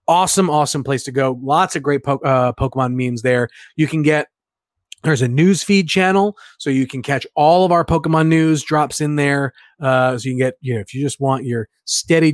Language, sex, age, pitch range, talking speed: English, male, 30-49, 130-210 Hz, 225 wpm